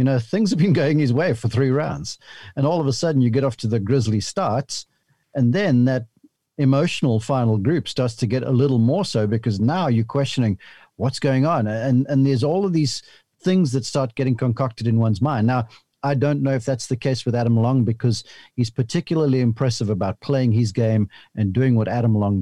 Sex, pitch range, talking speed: male, 110-140 Hz, 215 wpm